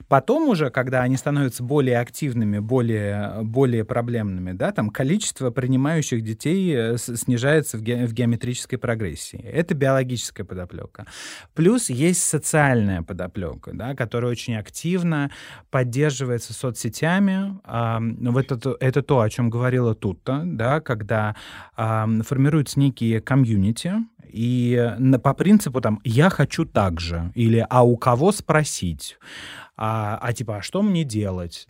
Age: 30-49